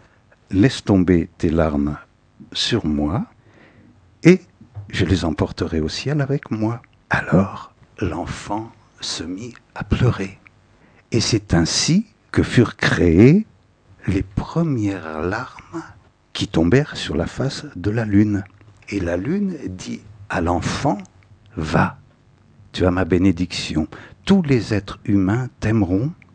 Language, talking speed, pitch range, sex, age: French, 120 wpm, 95-125 Hz, male, 60-79